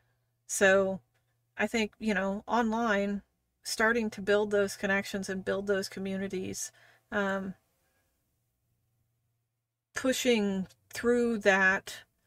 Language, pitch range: English, 190-210 Hz